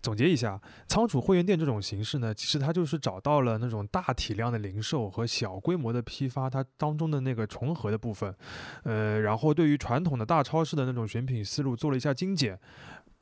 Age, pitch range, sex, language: 20-39, 110-145 Hz, male, Chinese